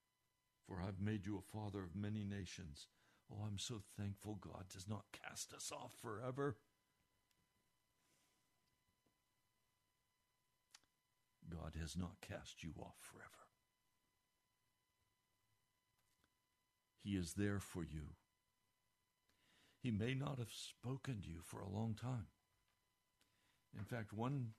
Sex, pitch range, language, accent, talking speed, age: male, 100-120 Hz, English, American, 110 wpm, 60-79